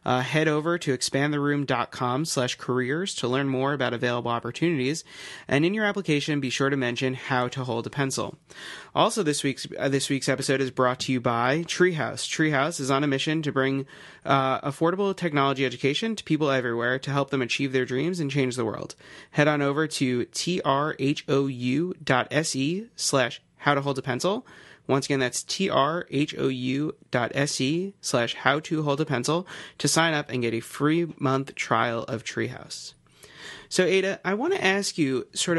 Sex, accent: male, American